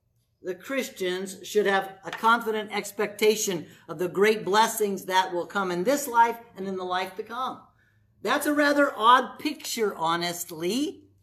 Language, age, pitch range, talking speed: English, 50-69, 175-225 Hz, 155 wpm